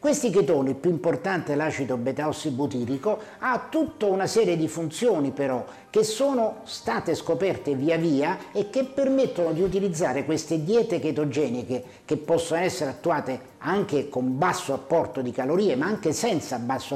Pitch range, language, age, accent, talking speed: 135-205 Hz, Italian, 50-69, native, 150 wpm